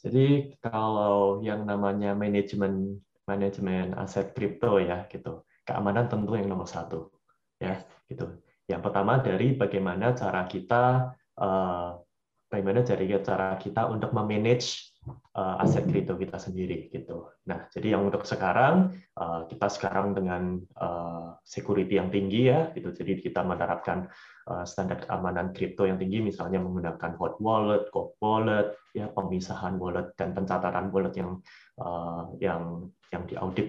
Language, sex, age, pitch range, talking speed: Indonesian, male, 20-39, 95-110 Hz, 135 wpm